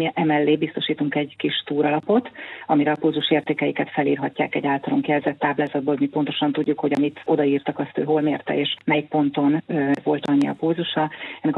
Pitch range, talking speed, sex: 145-155 Hz, 170 wpm, female